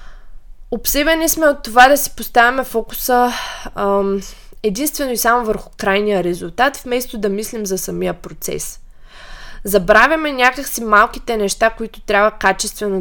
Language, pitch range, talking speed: Bulgarian, 200-265 Hz, 130 wpm